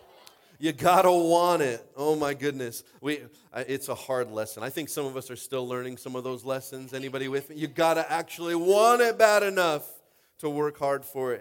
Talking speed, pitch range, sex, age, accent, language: 200 wpm, 110-155 Hz, male, 30-49, American, English